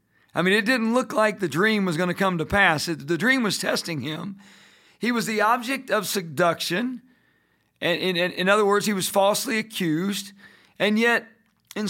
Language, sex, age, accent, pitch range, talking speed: English, male, 50-69, American, 165-220 Hz, 190 wpm